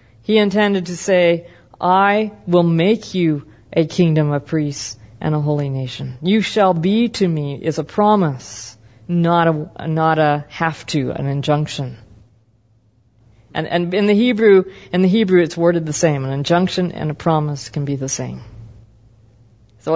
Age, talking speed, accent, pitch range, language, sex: 50-69, 160 wpm, American, 120-175 Hz, English, female